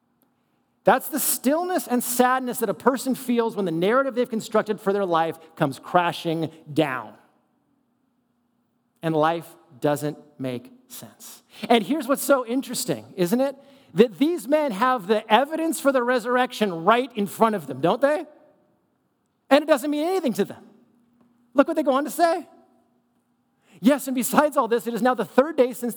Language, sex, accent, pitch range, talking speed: English, male, American, 210-270 Hz, 170 wpm